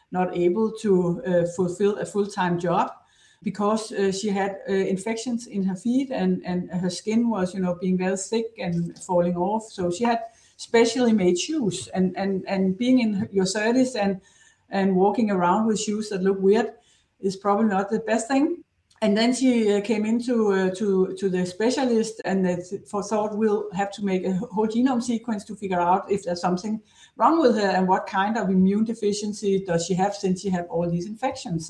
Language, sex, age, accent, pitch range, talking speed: English, female, 60-79, Danish, 180-220 Hz, 200 wpm